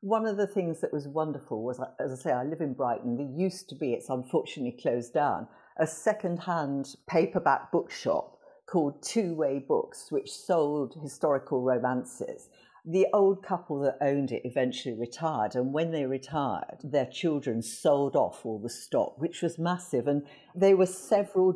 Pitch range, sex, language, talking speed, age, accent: 130-175 Hz, female, English, 170 wpm, 50-69, British